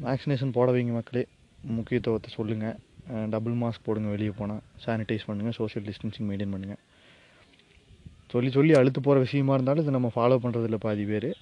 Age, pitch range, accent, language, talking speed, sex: 20-39, 110-130 Hz, native, Tamil, 150 wpm, male